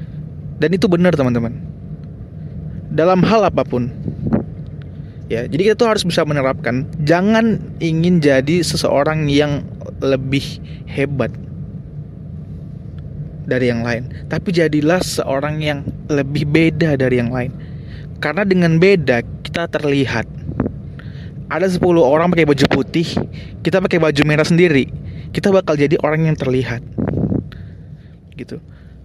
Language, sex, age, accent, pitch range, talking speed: Indonesian, male, 20-39, native, 135-175 Hz, 115 wpm